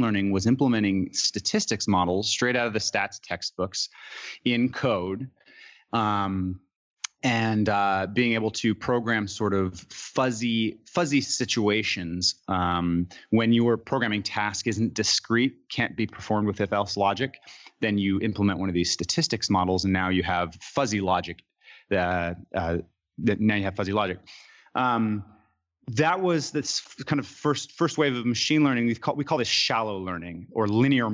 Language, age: English, 30-49